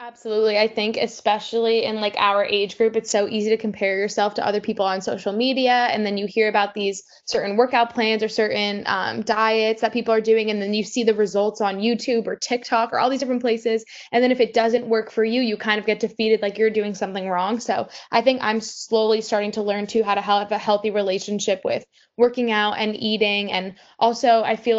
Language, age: English, 10-29